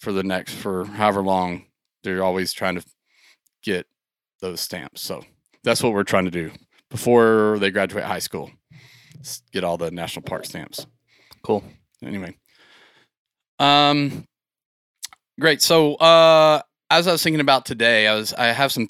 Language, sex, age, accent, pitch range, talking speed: English, male, 30-49, American, 105-135 Hz, 150 wpm